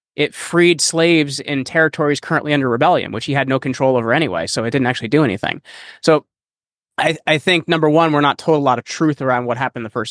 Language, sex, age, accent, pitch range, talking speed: English, male, 20-39, American, 125-155 Hz, 235 wpm